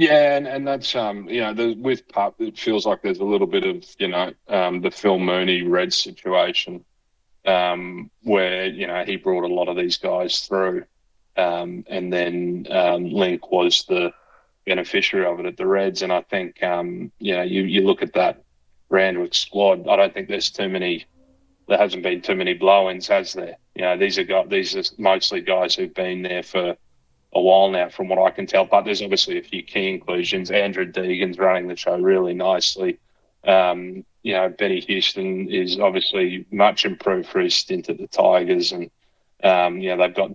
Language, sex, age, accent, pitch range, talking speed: English, male, 30-49, Australian, 90-105 Hz, 200 wpm